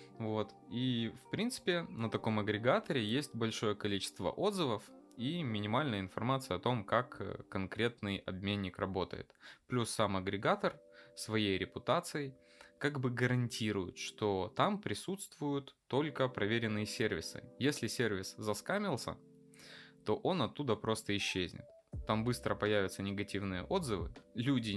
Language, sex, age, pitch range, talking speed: Russian, male, 20-39, 100-125 Hz, 115 wpm